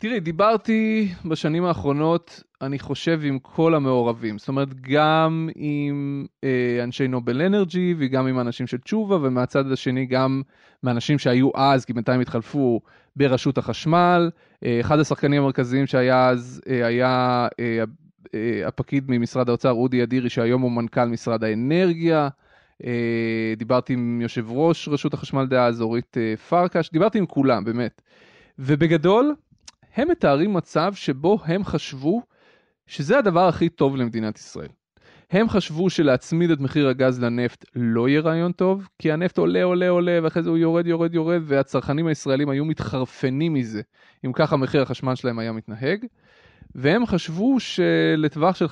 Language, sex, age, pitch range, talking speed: Hebrew, male, 20-39, 125-170 Hz, 135 wpm